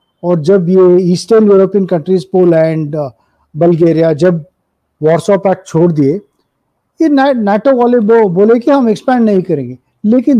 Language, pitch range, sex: English, 175-230 Hz, male